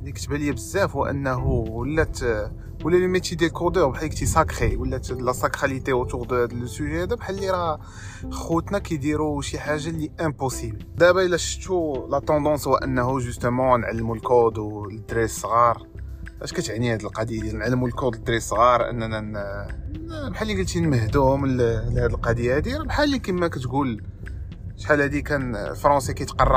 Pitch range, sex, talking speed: 110-150 Hz, male, 110 wpm